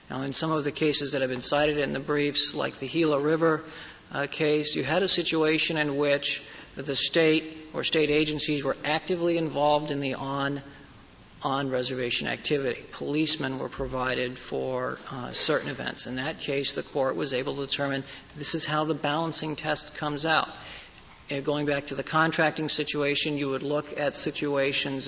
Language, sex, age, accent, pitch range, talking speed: English, male, 50-69, American, 135-155 Hz, 170 wpm